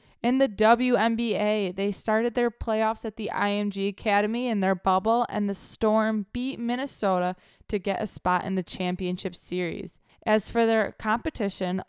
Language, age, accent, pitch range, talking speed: English, 20-39, American, 185-220 Hz, 155 wpm